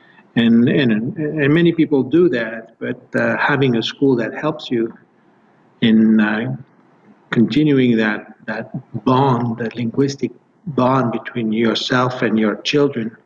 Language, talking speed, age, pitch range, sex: English, 130 wpm, 50-69, 115-140 Hz, male